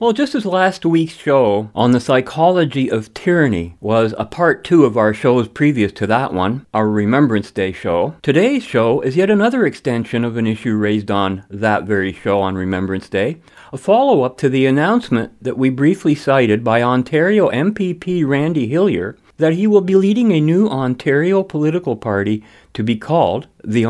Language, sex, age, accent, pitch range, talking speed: English, male, 50-69, American, 115-165 Hz, 180 wpm